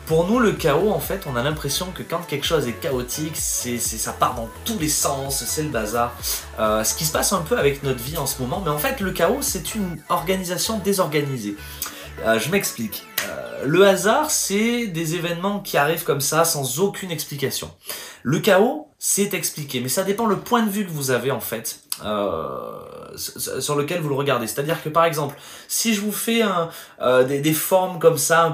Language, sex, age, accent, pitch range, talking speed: French, male, 20-39, French, 140-195 Hz, 215 wpm